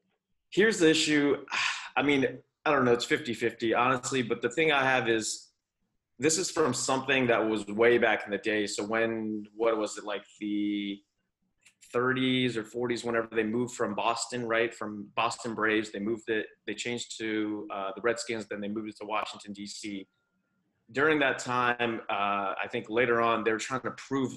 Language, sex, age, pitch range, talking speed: English, male, 20-39, 110-130 Hz, 185 wpm